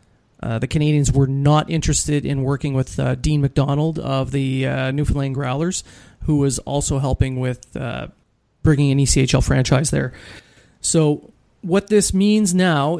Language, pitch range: English, 135-170 Hz